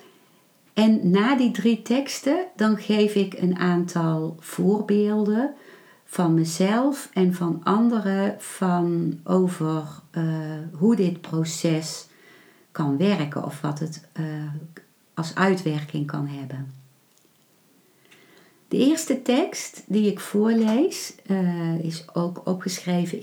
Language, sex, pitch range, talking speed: Dutch, female, 160-205 Hz, 105 wpm